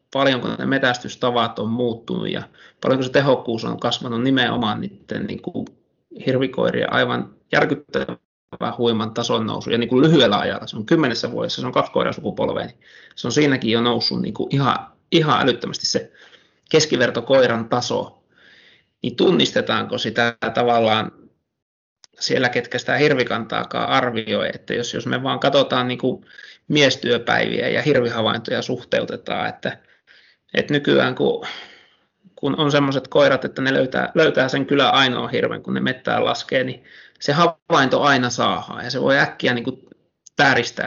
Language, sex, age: Finnish, male, 30-49